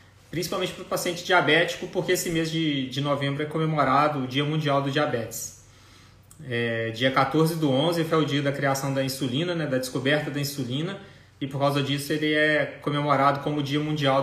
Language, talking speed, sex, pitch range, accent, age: Portuguese, 190 wpm, male, 135-160 Hz, Brazilian, 20-39